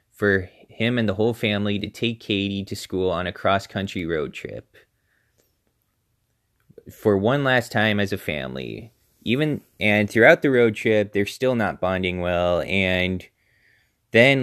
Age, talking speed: 20-39, 150 wpm